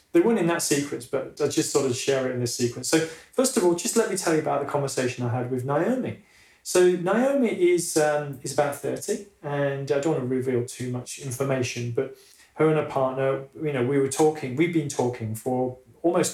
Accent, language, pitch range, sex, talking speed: British, English, 125-150 Hz, male, 230 wpm